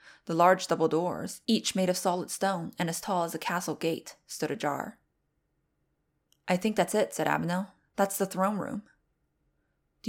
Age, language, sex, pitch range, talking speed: 20-39, English, female, 165-195 Hz, 170 wpm